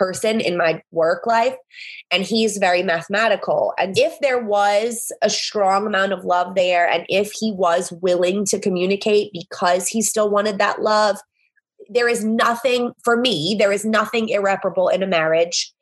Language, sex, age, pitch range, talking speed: English, female, 20-39, 180-230 Hz, 165 wpm